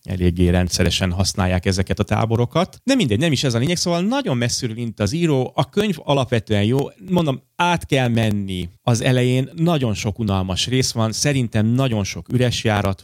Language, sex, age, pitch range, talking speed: Hungarian, male, 30-49, 100-140 Hz, 175 wpm